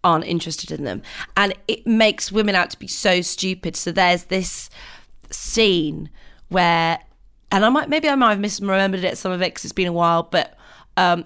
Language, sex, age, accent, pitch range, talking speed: English, female, 20-39, British, 175-225 Hz, 195 wpm